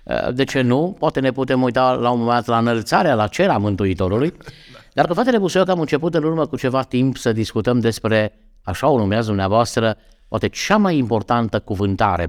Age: 50-69